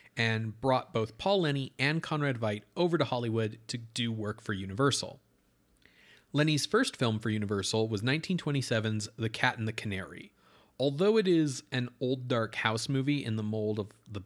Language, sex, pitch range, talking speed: English, male, 110-135 Hz, 175 wpm